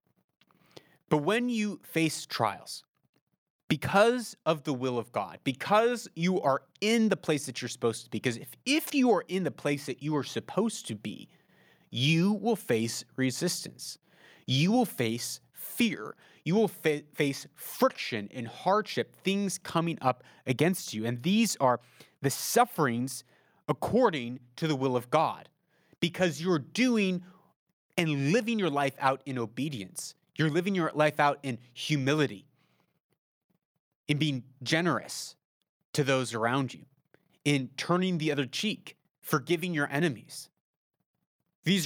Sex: male